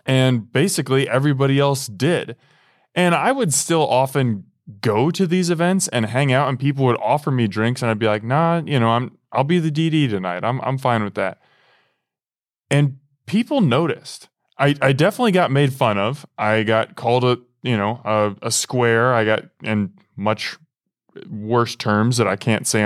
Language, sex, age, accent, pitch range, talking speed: English, male, 20-39, American, 110-150 Hz, 185 wpm